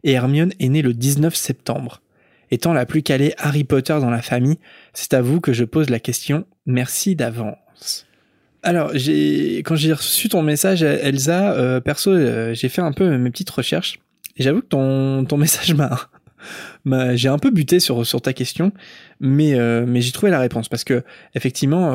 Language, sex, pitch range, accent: French, male, 125-165 Hz, French